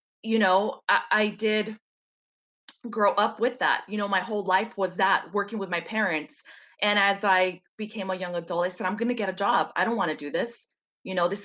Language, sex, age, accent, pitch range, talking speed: English, female, 20-39, American, 190-220 Hz, 230 wpm